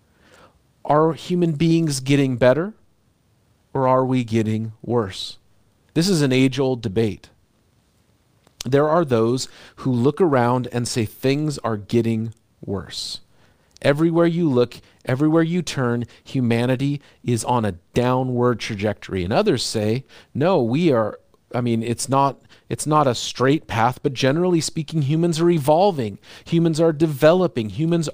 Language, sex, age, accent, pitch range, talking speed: English, male, 40-59, American, 115-140 Hz, 135 wpm